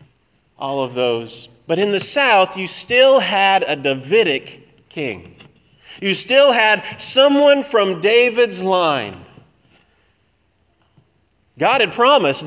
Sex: male